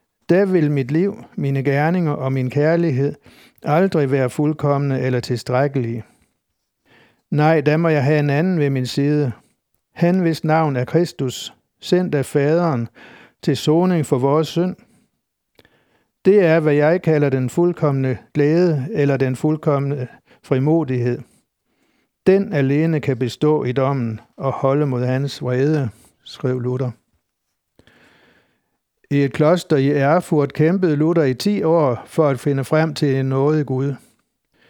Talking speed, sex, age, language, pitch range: 135 wpm, male, 60-79, Danish, 135-165 Hz